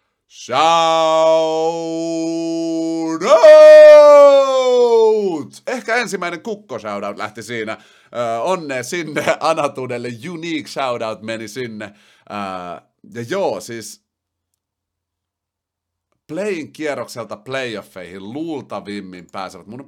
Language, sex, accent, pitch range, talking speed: Finnish, male, native, 100-160 Hz, 80 wpm